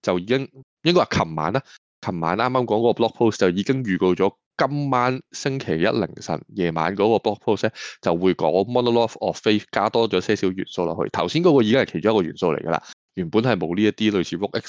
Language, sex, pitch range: Chinese, male, 85-115 Hz